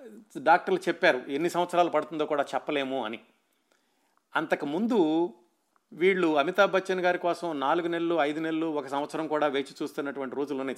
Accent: native